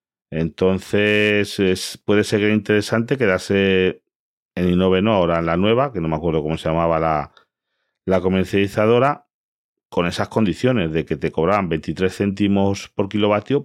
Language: Spanish